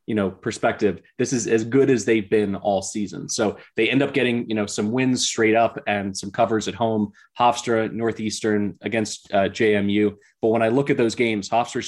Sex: male